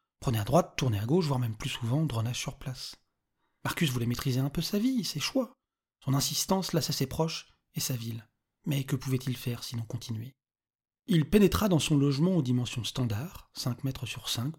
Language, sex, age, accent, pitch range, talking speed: French, male, 30-49, French, 125-155 Hz, 200 wpm